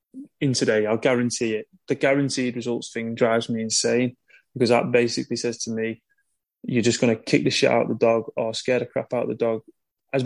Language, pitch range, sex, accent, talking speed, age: English, 115-135 Hz, male, British, 215 wpm, 20-39